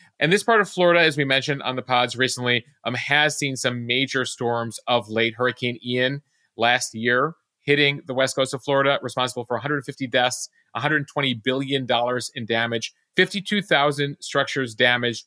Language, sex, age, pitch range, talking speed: English, male, 30-49, 115-140 Hz, 160 wpm